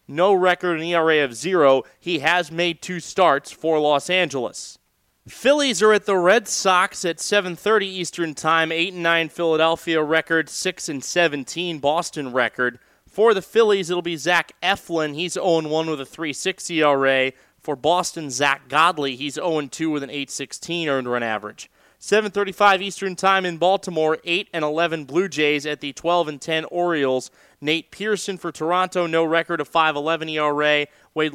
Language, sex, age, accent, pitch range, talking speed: English, male, 30-49, American, 150-180 Hz, 150 wpm